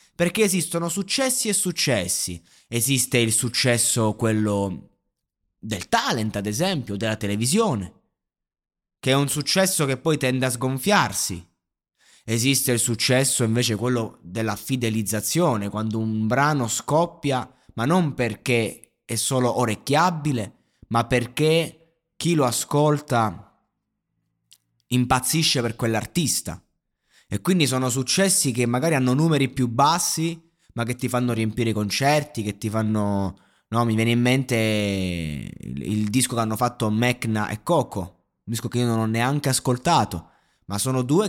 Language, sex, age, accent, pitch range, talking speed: Italian, male, 20-39, native, 110-150 Hz, 135 wpm